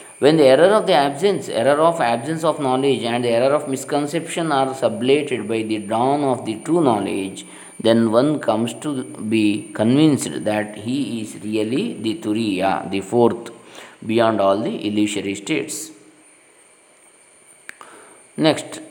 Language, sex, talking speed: Kannada, male, 145 wpm